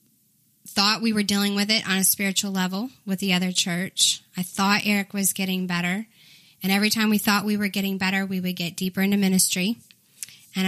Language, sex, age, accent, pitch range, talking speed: English, female, 10-29, American, 185-205 Hz, 200 wpm